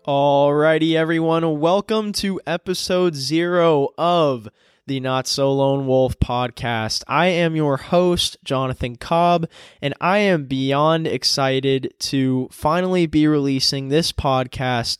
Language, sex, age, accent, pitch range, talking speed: English, male, 20-39, American, 130-160 Hz, 120 wpm